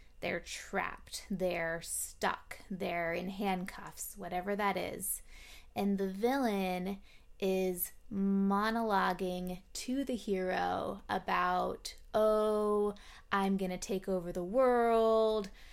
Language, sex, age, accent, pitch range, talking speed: English, female, 20-39, American, 185-215 Hz, 105 wpm